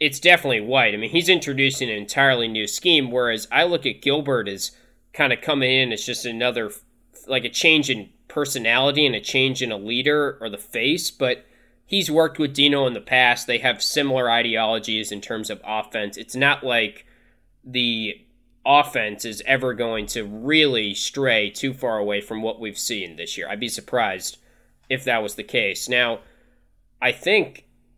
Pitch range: 115-140 Hz